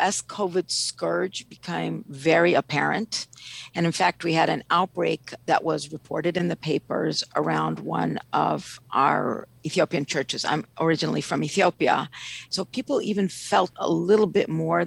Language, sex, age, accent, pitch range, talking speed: English, female, 50-69, American, 160-210 Hz, 150 wpm